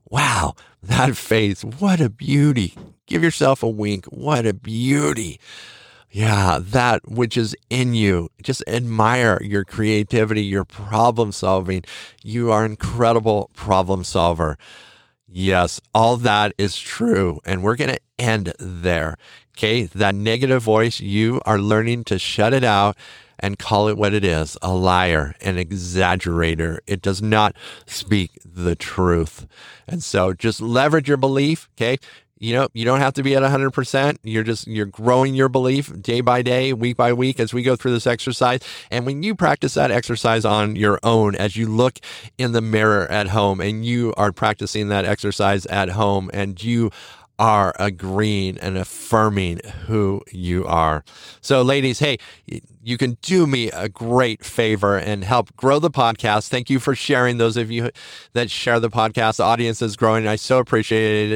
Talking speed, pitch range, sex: 170 wpm, 100-125 Hz, male